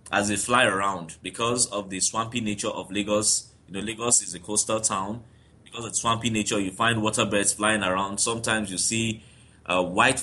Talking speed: 195 wpm